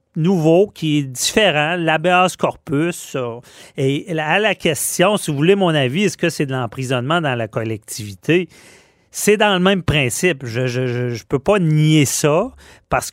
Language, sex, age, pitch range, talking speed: French, male, 40-59, 125-165 Hz, 160 wpm